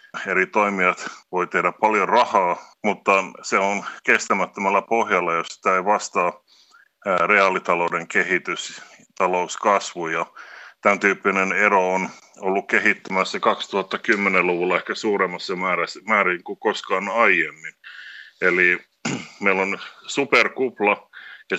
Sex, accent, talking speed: male, native, 105 wpm